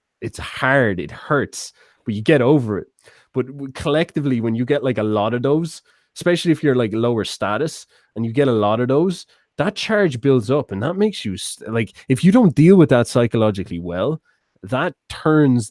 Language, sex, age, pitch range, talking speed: English, male, 20-39, 105-135 Hz, 195 wpm